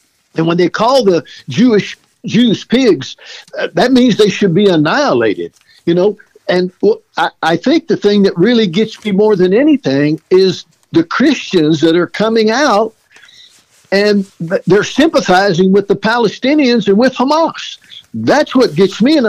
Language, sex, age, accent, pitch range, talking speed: English, male, 60-79, American, 175-245 Hz, 160 wpm